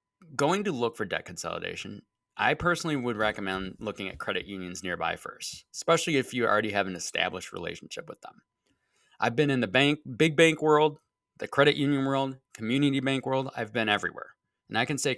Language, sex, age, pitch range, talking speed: English, male, 20-39, 100-145 Hz, 190 wpm